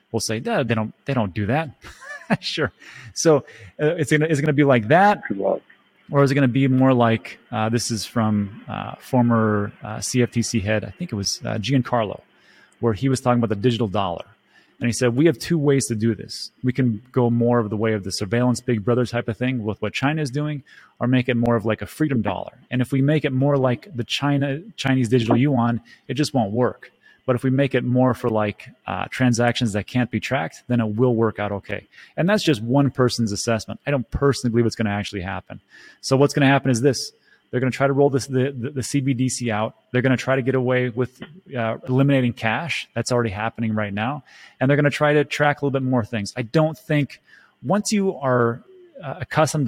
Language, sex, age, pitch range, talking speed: English, male, 30-49, 115-140 Hz, 235 wpm